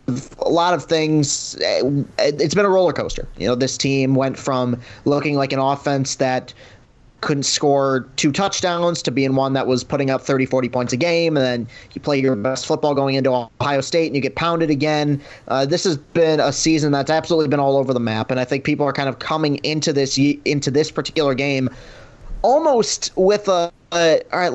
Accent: American